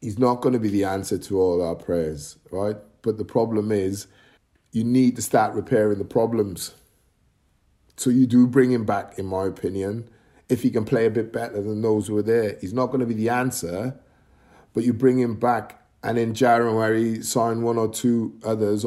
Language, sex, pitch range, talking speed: English, male, 105-130 Hz, 205 wpm